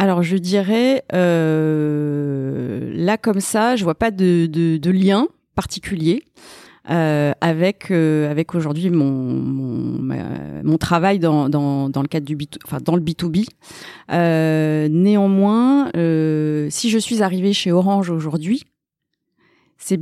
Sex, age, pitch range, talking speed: female, 30-49, 150-195 Hz, 140 wpm